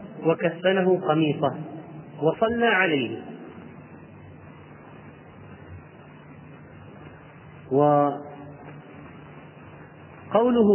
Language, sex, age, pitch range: Arabic, male, 40-59, 160-205 Hz